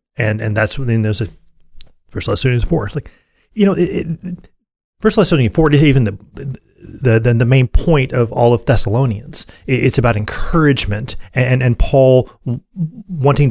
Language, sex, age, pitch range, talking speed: English, male, 30-49, 110-135 Hz, 185 wpm